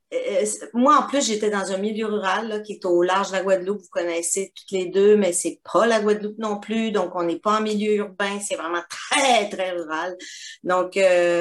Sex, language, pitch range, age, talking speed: female, French, 175-225 Hz, 40-59, 220 wpm